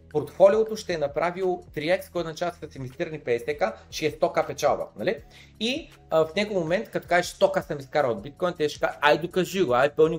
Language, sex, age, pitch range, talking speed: Bulgarian, male, 30-49, 135-175 Hz, 205 wpm